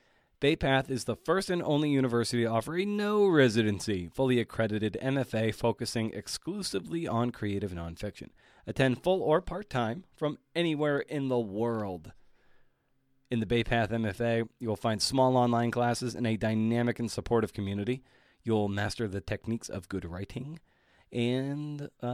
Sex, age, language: male, 30-49, English